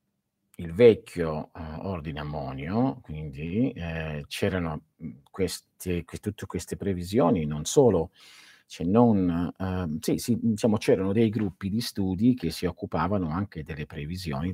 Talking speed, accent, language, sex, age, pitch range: 135 wpm, native, Italian, male, 50-69, 80-95 Hz